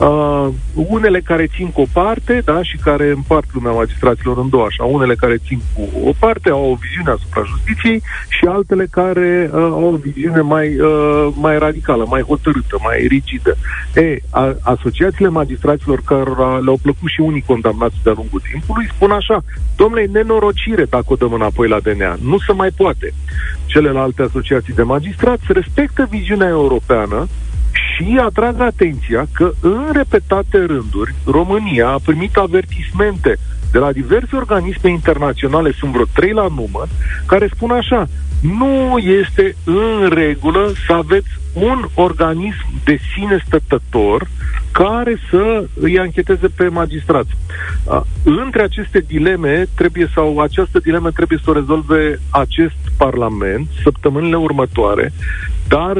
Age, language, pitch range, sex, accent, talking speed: 40-59, Romanian, 125-190 Hz, male, native, 145 wpm